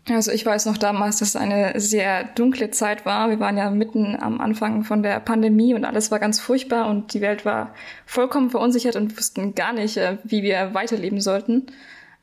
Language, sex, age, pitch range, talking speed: German, female, 10-29, 205-240 Hz, 195 wpm